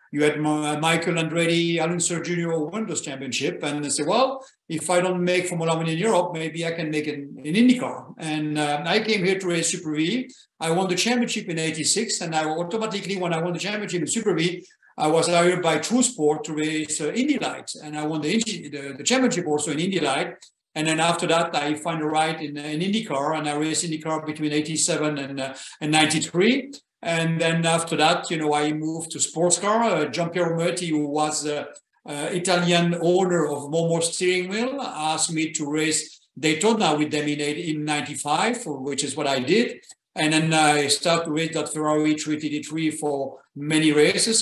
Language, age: English, 50-69